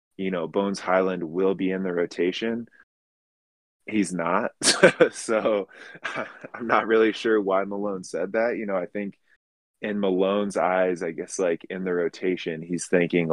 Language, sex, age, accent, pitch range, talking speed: English, male, 20-39, American, 85-95 Hz, 160 wpm